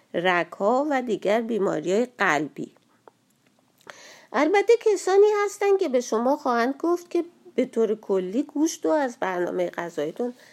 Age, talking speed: 50-69, 130 wpm